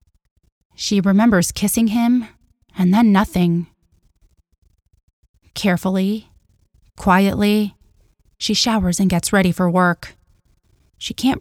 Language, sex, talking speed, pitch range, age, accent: English, female, 95 wpm, 170-200 Hz, 30-49, American